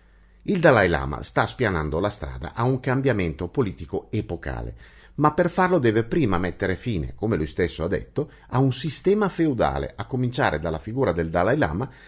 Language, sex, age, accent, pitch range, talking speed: Italian, male, 50-69, native, 85-140 Hz, 175 wpm